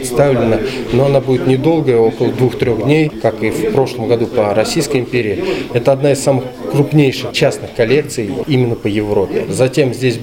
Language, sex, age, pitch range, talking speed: Russian, male, 20-39, 120-140 Hz, 165 wpm